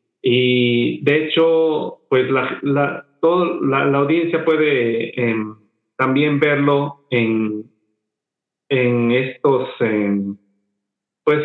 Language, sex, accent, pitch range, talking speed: Spanish, male, Mexican, 115-145 Hz, 100 wpm